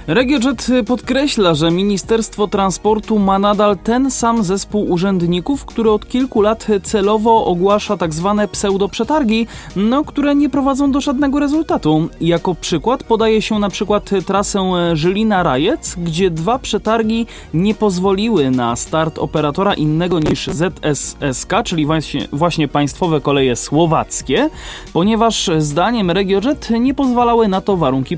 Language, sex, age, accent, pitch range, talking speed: Polish, male, 20-39, native, 175-235 Hz, 130 wpm